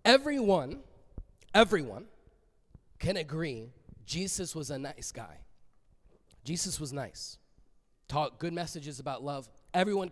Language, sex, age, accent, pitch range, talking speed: English, male, 20-39, American, 160-225 Hz, 105 wpm